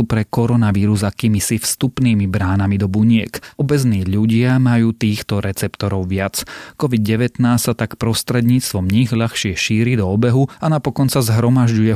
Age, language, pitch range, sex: 30-49, Slovak, 105-125 Hz, male